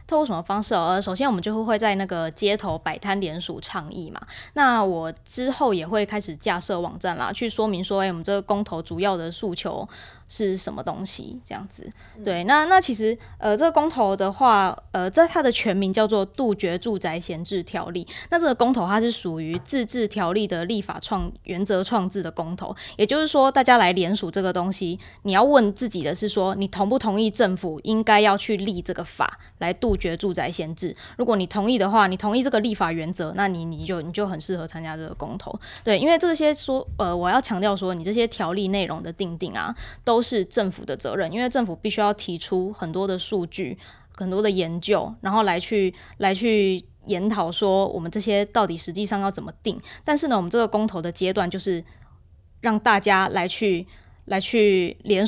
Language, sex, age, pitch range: Chinese, female, 20-39, 180-220 Hz